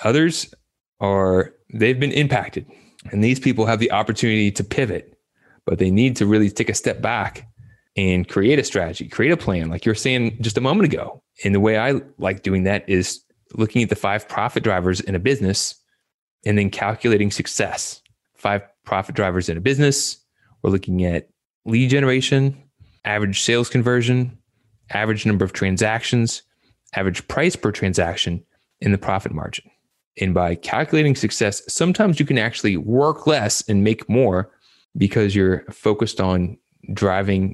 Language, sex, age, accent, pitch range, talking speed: English, male, 20-39, American, 95-115 Hz, 165 wpm